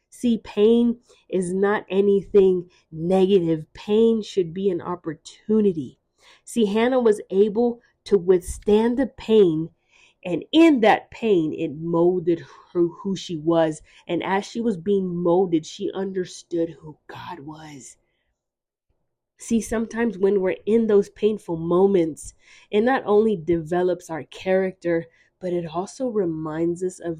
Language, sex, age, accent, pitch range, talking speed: English, female, 20-39, American, 165-210 Hz, 130 wpm